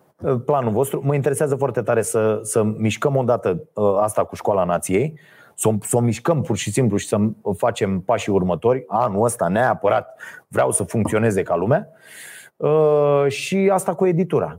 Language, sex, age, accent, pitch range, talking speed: Romanian, male, 30-49, native, 110-155 Hz, 150 wpm